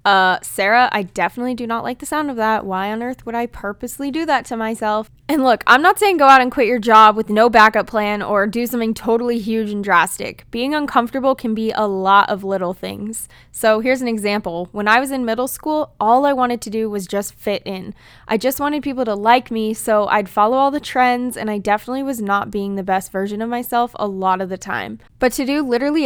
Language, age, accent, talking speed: English, 10-29, American, 240 wpm